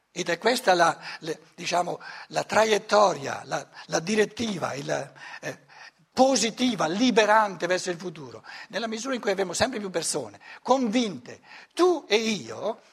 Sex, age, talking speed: male, 60-79, 125 wpm